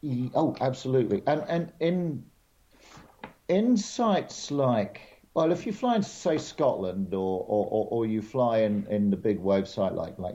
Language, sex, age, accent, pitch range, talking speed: English, male, 50-69, British, 100-125 Hz, 160 wpm